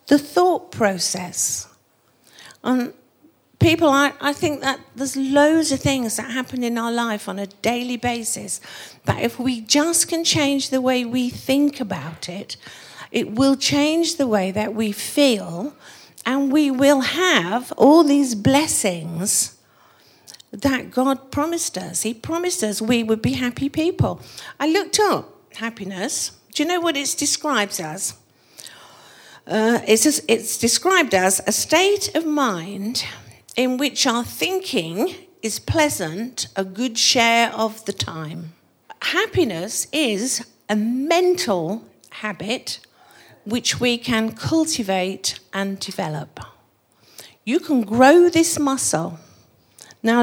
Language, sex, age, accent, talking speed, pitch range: English, female, 50-69, British, 130 wpm, 215-290 Hz